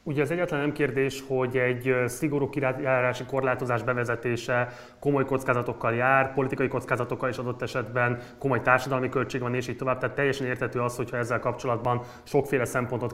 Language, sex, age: Hungarian, male, 20-39